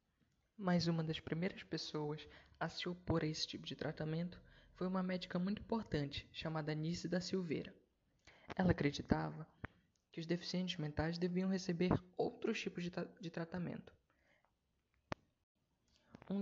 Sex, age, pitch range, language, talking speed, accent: female, 20-39, 155-195 Hz, Portuguese, 130 wpm, Brazilian